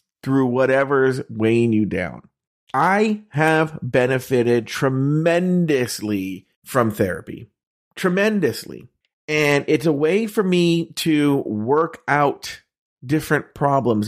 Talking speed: 100 wpm